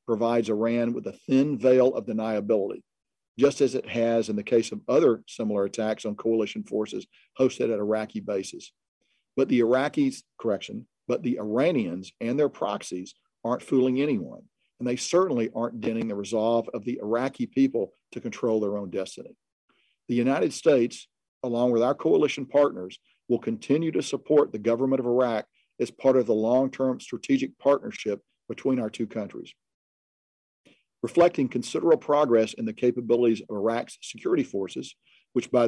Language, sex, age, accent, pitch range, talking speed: English, male, 50-69, American, 110-130 Hz, 160 wpm